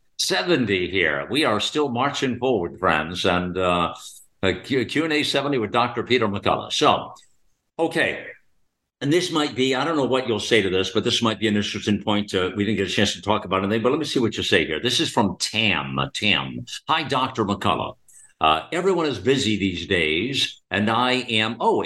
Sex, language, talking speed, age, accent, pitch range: male, English, 205 wpm, 60-79, American, 100-130 Hz